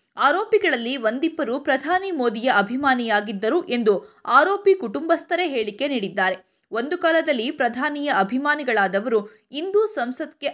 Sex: female